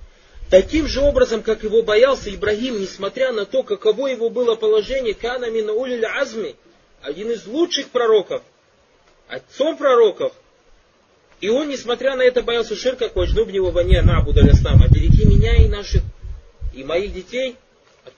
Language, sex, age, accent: Russian, male, 30-49, native